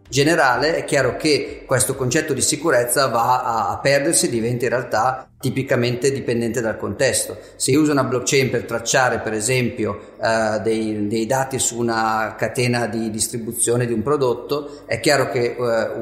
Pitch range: 115-145 Hz